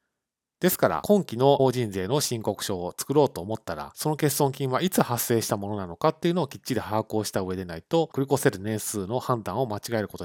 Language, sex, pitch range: Japanese, male, 105-145 Hz